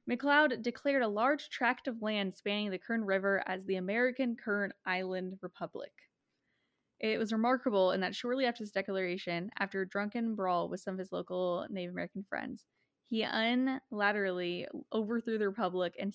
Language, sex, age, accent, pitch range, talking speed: English, female, 10-29, American, 185-235 Hz, 165 wpm